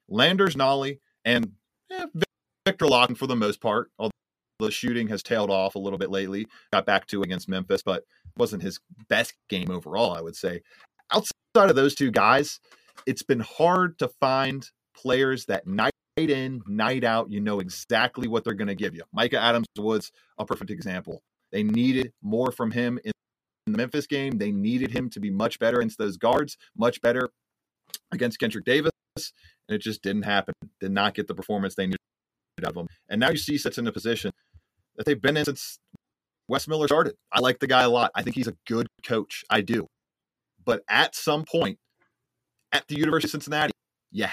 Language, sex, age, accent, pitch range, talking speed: English, male, 30-49, American, 110-160 Hz, 195 wpm